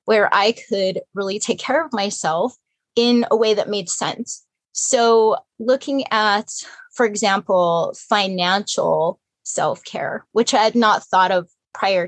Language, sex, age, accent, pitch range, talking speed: English, female, 20-39, American, 190-230 Hz, 140 wpm